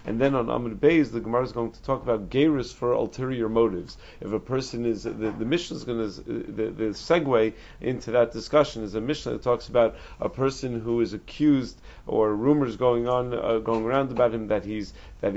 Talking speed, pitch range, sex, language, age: 215 wpm, 110-135 Hz, male, English, 40-59